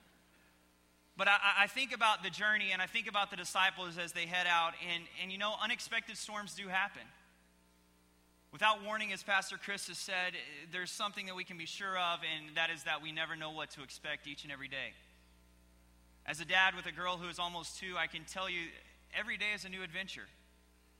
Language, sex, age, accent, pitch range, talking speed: English, male, 30-49, American, 150-200 Hz, 210 wpm